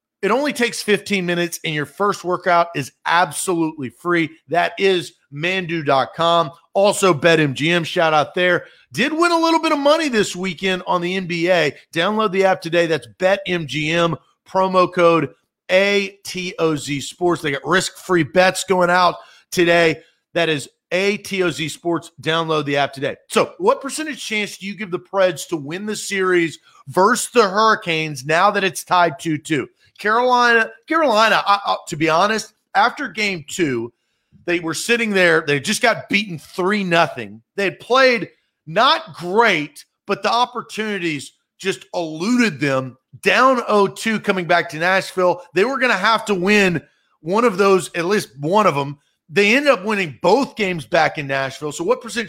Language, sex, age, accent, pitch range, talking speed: English, male, 30-49, American, 165-205 Hz, 165 wpm